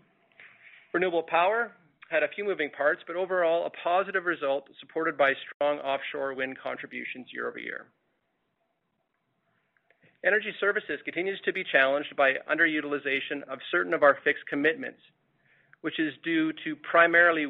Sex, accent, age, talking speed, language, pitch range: male, American, 40-59, 135 wpm, English, 135-175 Hz